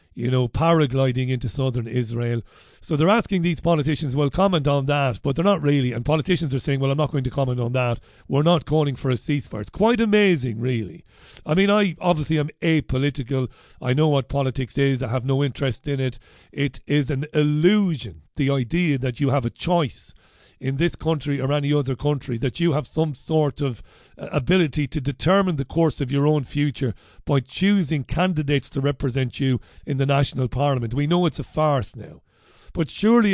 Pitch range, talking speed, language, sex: 130-155 Hz, 195 wpm, English, male